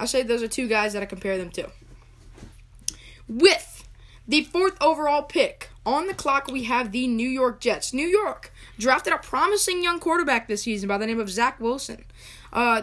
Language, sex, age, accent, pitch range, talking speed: English, female, 10-29, American, 215-290 Hz, 190 wpm